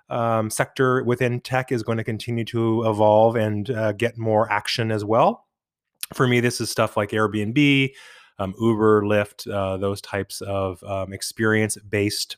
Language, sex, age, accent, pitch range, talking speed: English, male, 20-39, American, 100-115 Hz, 165 wpm